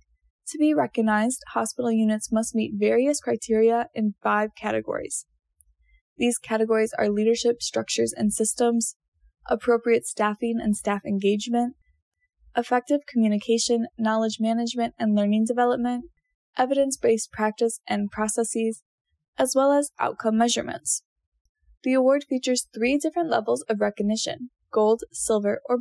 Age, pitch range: 10-29, 210-250 Hz